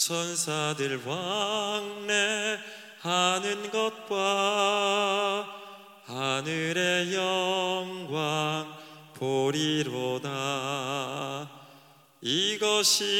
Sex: male